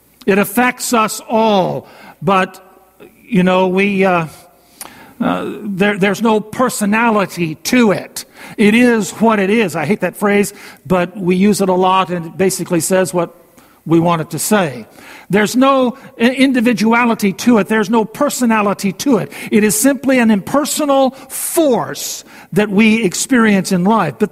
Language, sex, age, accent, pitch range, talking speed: English, male, 50-69, American, 175-235 Hz, 155 wpm